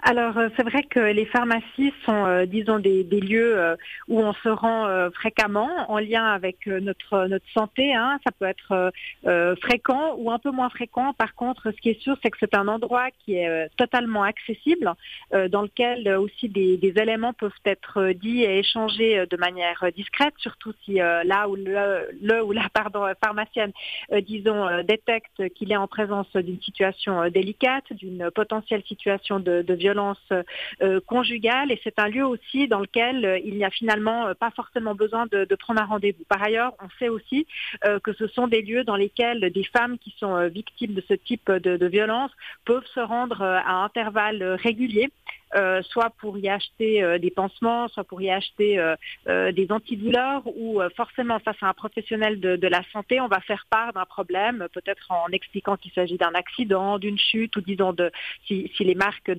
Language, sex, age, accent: French, female, 40-59, French